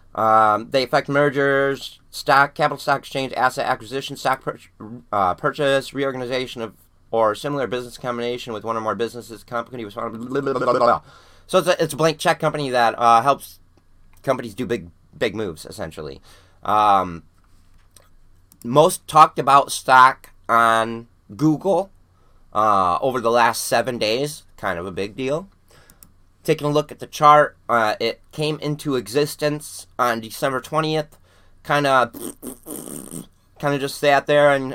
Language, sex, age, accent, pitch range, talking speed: English, male, 30-49, American, 115-150 Hz, 140 wpm